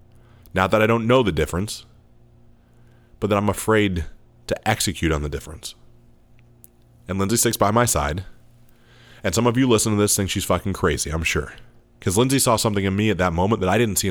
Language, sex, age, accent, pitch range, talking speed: English, male, 30-49, American, 85-115 Hz, 205 wpm